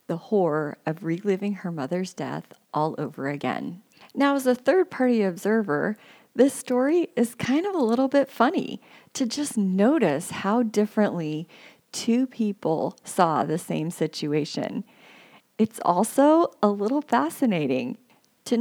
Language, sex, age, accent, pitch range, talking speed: English, female, 40-59, American, 175-240 Hz, 130 wpm